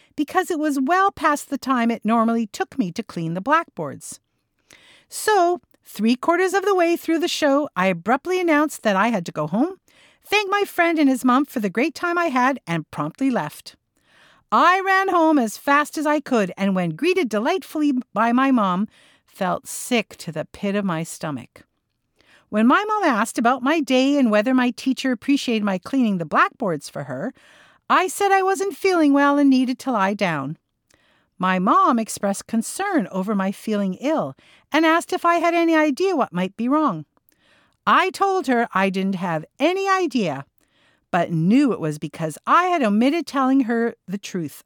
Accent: American